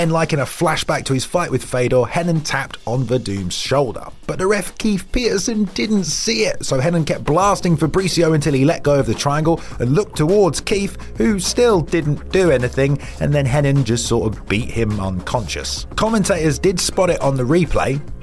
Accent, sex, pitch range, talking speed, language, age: British, male, 135-175 Hz, 200 wpm, English, 30-49